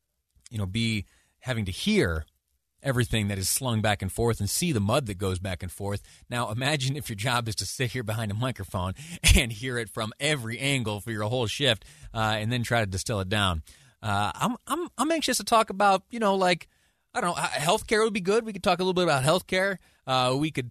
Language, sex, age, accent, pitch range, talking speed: English, male, 30-49, American, 105-135 Hz, 235 wpm